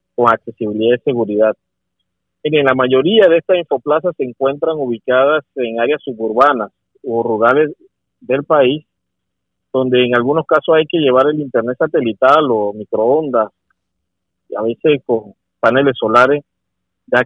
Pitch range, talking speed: 110-150 Hz, 130 wpm